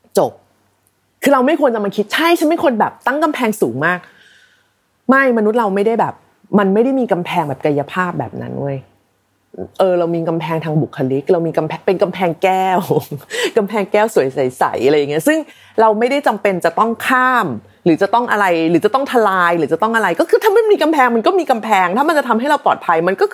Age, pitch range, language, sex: 30-49, 170-260 Hz, Thai, female